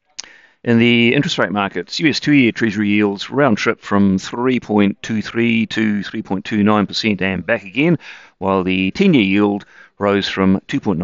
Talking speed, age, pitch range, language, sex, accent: 145 wpm, 40-59, 95-115 Hz, English, male, British